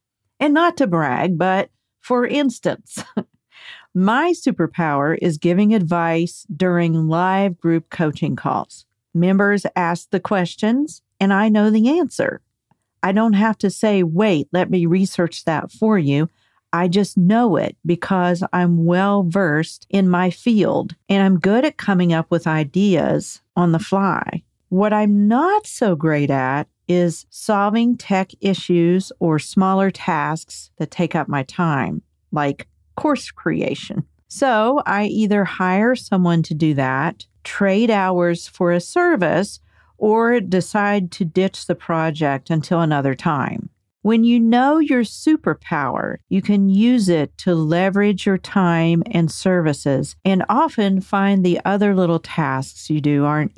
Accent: American